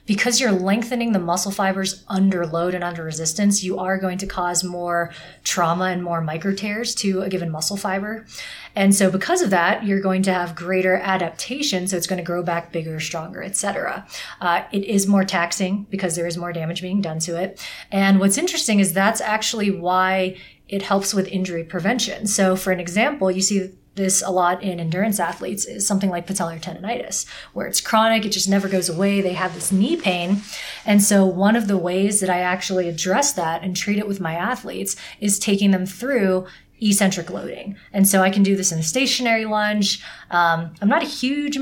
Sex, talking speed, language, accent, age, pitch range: female, 205 wpm, English, American, 30-49, 180-210 Hz